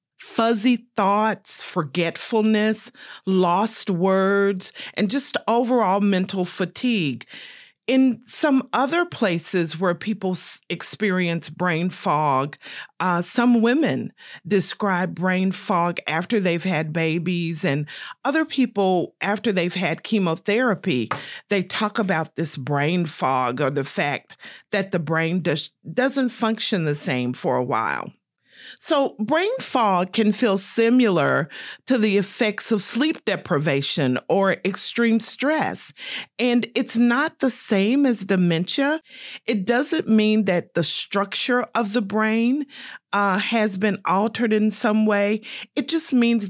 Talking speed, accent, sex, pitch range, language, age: 125 wpm, American, female, 175-240 Hz, English, 40-59